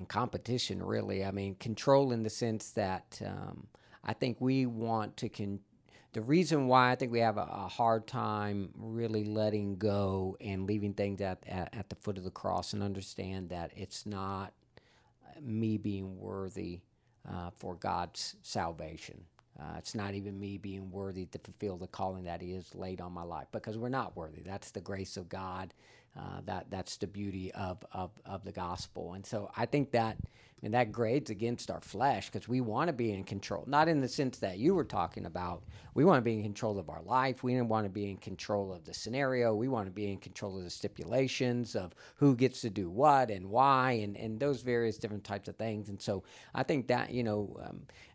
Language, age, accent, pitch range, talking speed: English, 50-69, American, 95-120 Hz, 210 wpm